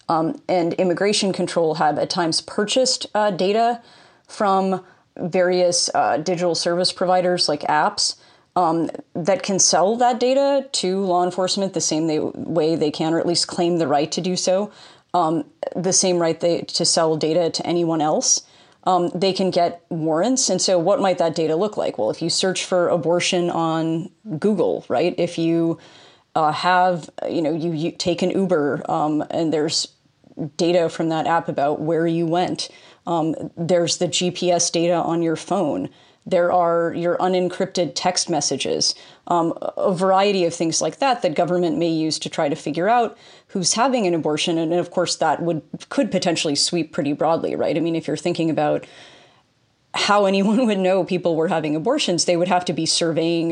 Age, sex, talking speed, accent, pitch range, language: 30-49, female, 180 wpm, American, 165-185 Hz, English